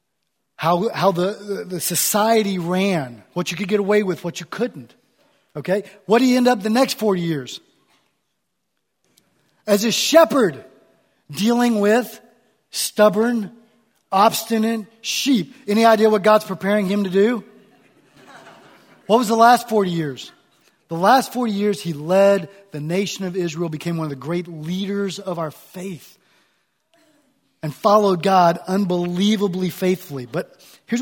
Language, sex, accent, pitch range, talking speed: English, male, American, 175-220 Hz, 140 wpm